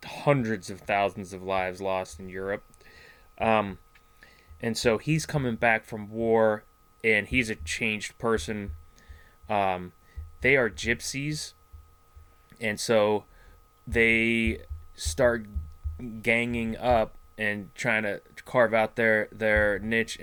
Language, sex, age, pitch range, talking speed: English, male, 20-39, 95-115 Hz, 115 wpm